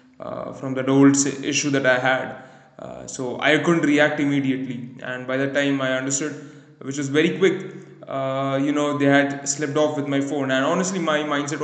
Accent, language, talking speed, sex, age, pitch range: Indian, English, 200 wpm, male, 20-39, 135-150 Hz